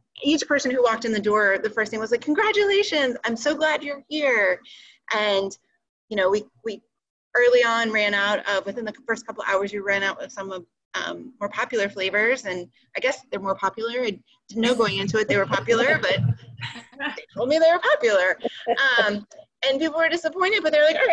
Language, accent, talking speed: English, American, 215 wpm